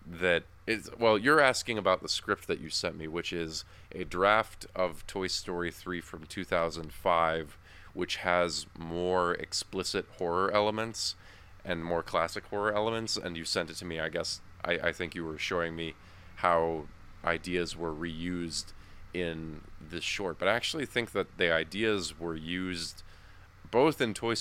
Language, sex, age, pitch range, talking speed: English, male, 20-39, 85-95 Hz, 165 wpm